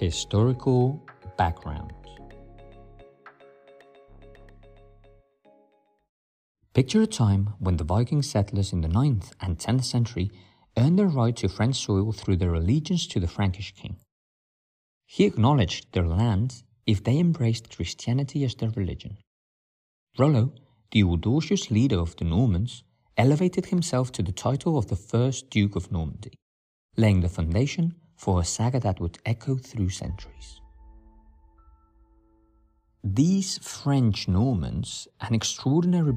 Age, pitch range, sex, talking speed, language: 50-69, 95-130 Hz, male, 120 wpm, English